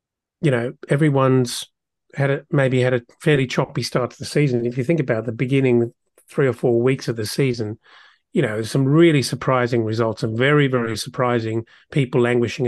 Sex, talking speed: male, 180 wpm